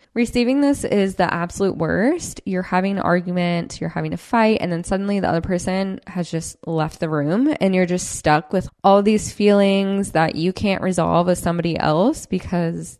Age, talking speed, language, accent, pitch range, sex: 10-29, 190 wpm, English, American, 175-225 Hz, female